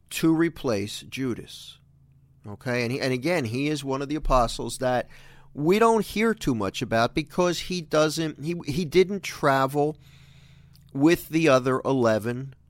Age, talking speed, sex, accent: 50-69, 150 wpm, male, American